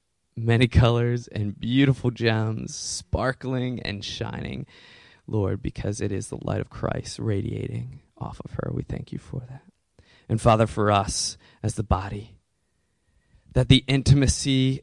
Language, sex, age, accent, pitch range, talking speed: English, male, 20-39, American, 105-125 Hz, 140 wpm